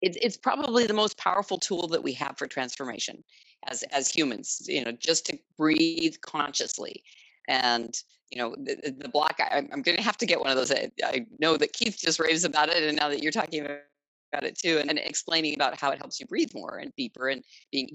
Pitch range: 130-185 Hz